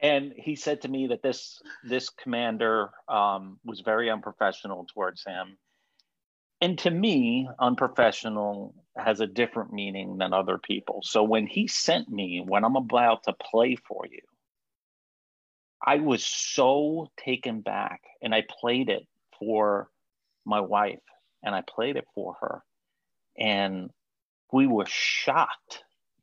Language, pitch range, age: English, 105-135 Hz, 40-59